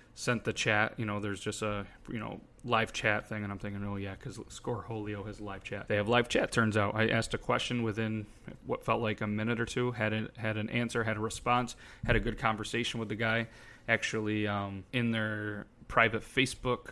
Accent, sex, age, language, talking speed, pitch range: American, male, 30-49, English, 215 wpm, 105-115 Hz